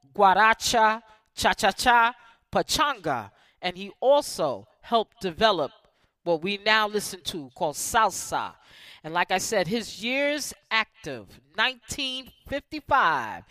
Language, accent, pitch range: English, American, 185-255 Hz